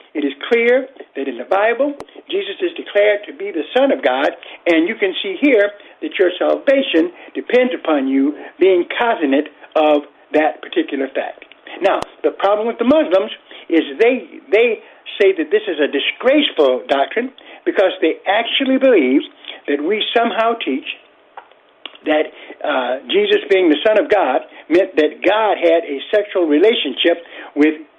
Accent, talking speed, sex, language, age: American, 155 wpm, male, English, 60-79